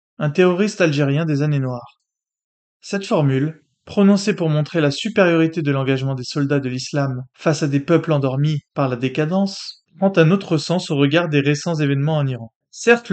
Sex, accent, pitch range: male, French, 145-190 Hz